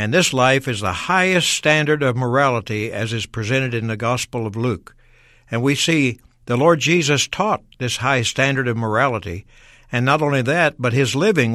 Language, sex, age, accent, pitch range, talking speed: English, male, 60-79, American, 115-140 Hz, 185 wpm